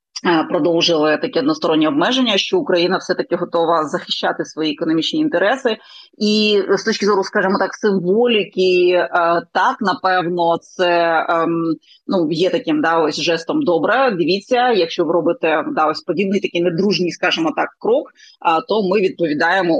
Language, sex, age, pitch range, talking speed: Ukrainian, female, 30-49, 165-195 Hz, 140 wpm